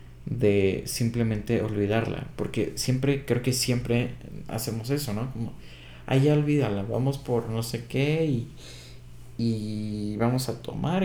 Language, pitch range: Spanish, 100-135 Hz